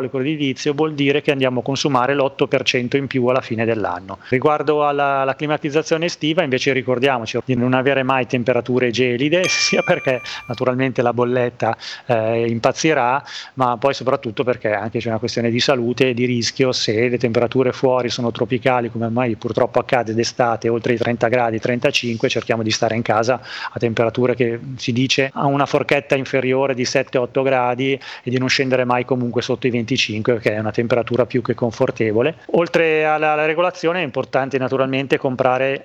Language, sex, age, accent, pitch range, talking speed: Italian, male, 30-49, native, 120-135 Hz, 175 wpm